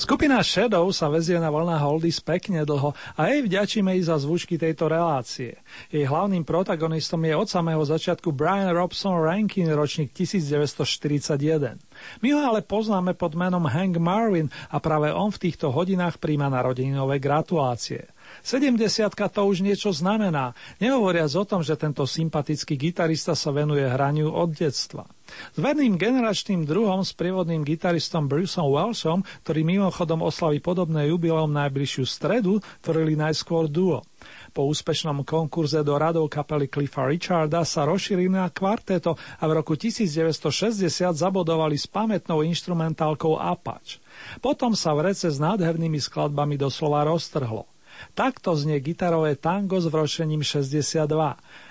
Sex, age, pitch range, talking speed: male, 40-59, 150-185 Hz, 135 wpm